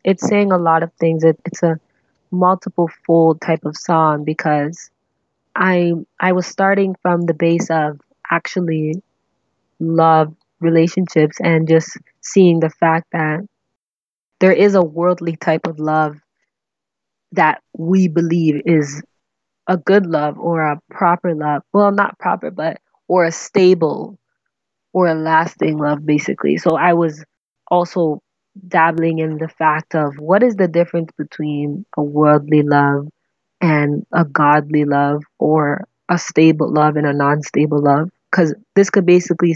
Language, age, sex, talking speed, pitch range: English, 20-39, female, 145 wpm, 150-175 Hz